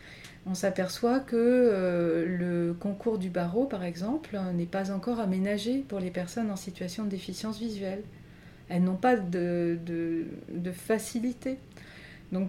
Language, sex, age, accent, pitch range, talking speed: French, female, 30-49, French, 185-225 Hz, 135 wpm